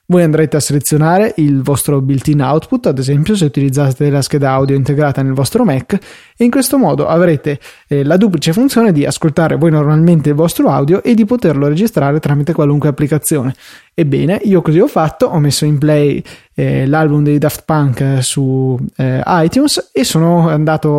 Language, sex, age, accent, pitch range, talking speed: Italian, male, 20-39, native, 145-165 Hz, 180 wpm